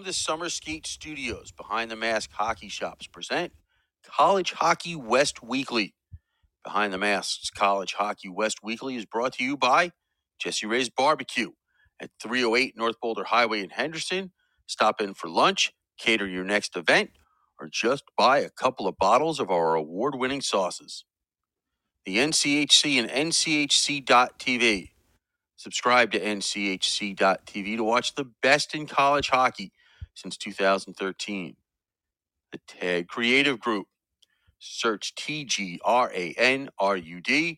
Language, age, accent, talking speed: English, 40-59, American, 125 wpm